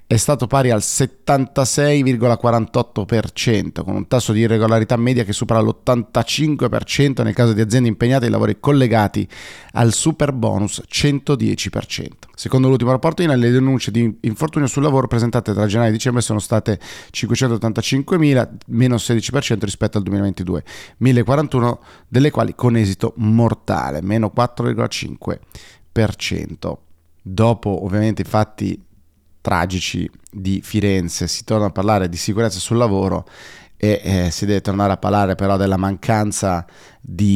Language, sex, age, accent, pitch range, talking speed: Italian, male, 30-49, native, 95-120 Hz, 130 wpm